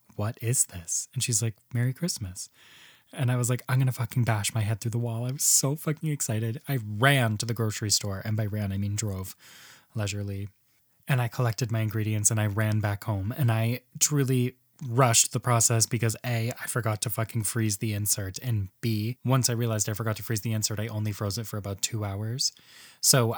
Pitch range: 110-130 Hz